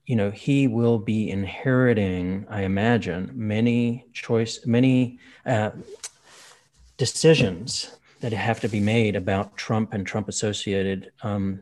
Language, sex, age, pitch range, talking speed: English, male, 30-49, 110-125 Hz, 120 wpm